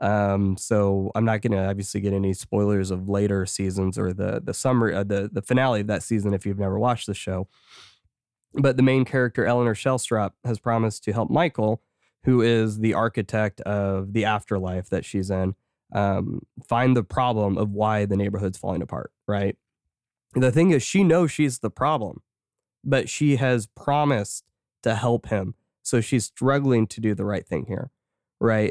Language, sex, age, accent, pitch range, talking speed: English, male, 20-39, American, 100-120 Hz, 180 wpm